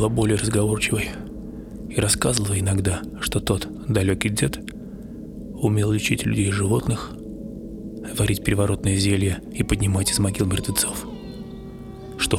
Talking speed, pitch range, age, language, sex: 110 wpm, 95-110 Hz, 20-39, Russian, male